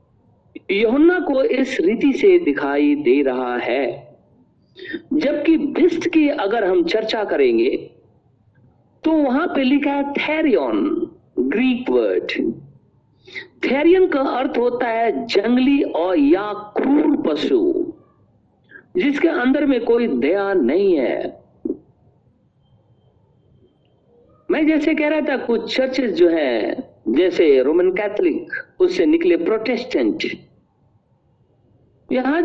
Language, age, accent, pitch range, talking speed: Hindi, 50-69, native, 270-355 Hz, 100 wpm